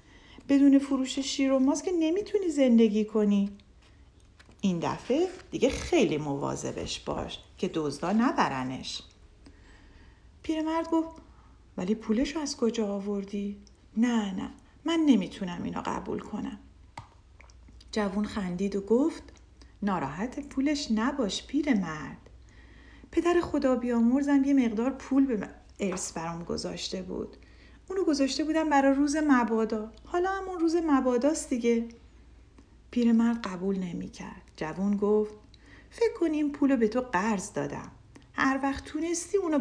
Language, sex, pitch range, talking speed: Persian, female, 200-285 Hz, 120 wpm